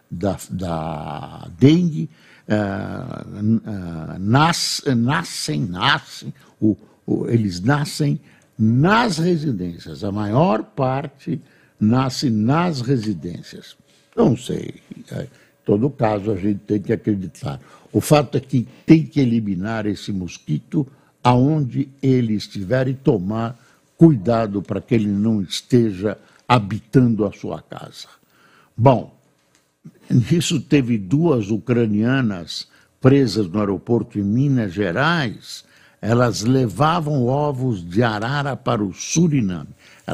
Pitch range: 105-140 Hz